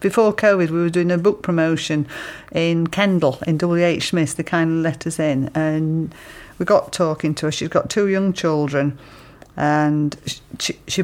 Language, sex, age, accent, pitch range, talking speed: English, female, 50-69, British, 150-180 Hz, 185 wpm